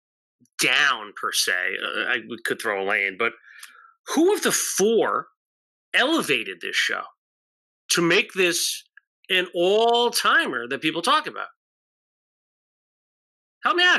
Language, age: English, 30-49